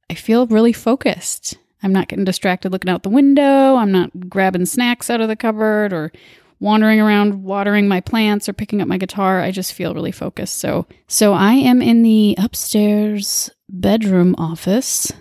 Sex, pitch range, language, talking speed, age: female, 190-230 Hz, English, 180 wpm, 20-39